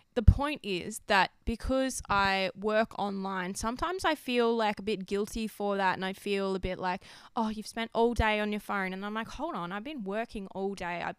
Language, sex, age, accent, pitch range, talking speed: English, female, 20-39, Australian, 190-225 Hz, 225 wpm